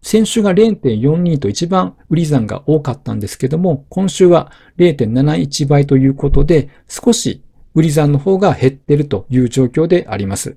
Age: 50-69